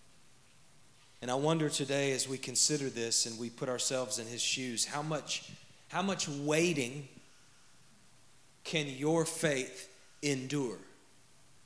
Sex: male